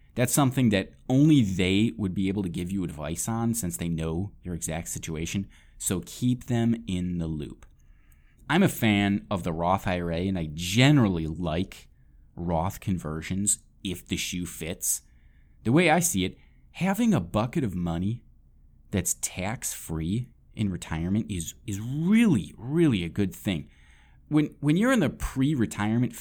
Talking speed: 160 wpm